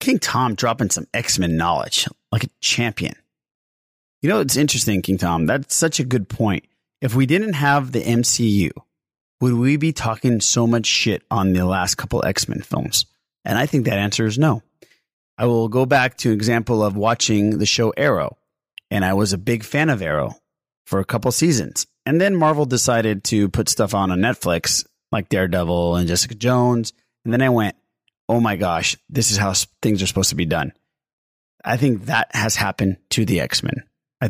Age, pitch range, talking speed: 30-49, 100-130 Hz, 190 wpm